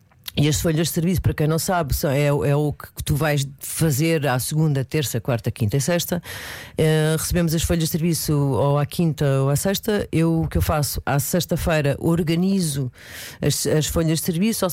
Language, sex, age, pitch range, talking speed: Portuguese, female, 40-59, 140-170 Hz, 195 wpm